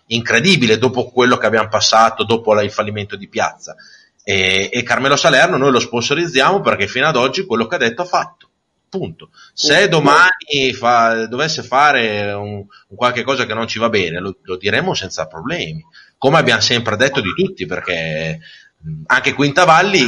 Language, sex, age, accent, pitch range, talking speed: Spanish, male, 30-49, Italian, 105-135 Hz, 175 wpm